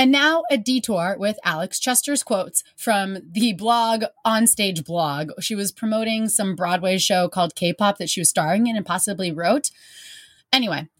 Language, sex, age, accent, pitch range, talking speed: English, female, 20-39, American, 175-230 Hz, 165 wpm